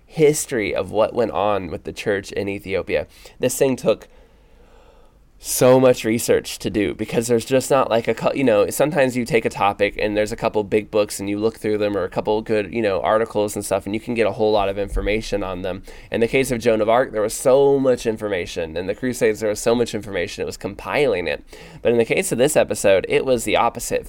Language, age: English, 20-39